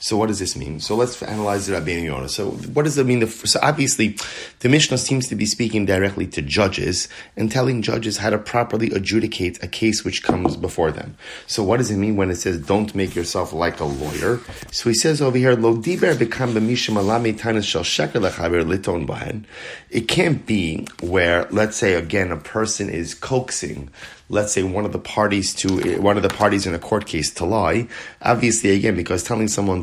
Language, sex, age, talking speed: English, male, 30-49, 180 wpm